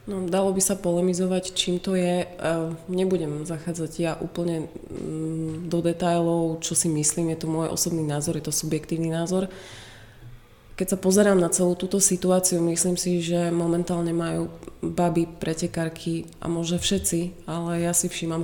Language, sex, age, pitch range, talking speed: Czech, female, 20-39, 165-185 Hz, 155 wpm